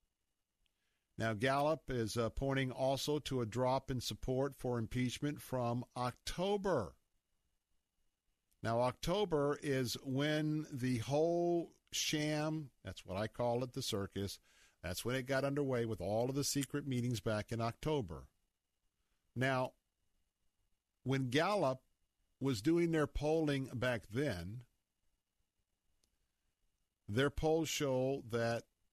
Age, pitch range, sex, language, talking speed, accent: 50-69, 105-145 Hz, male, English, 115 wpm, American